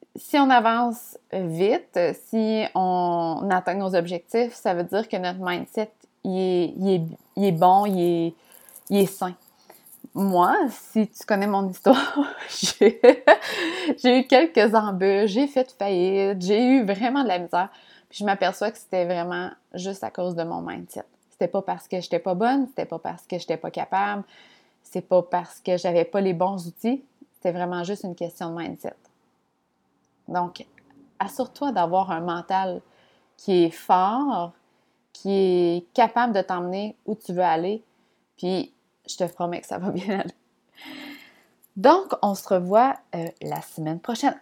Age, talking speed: 20-39, 165 wpm